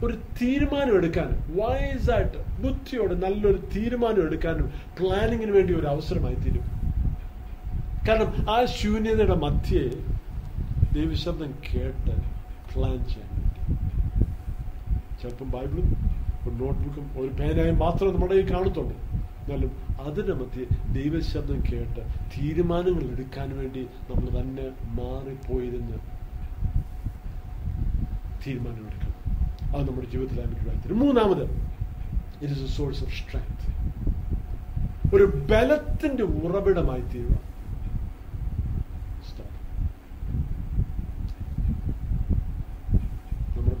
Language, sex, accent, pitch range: Malayalam, male, native, 90-145 Hz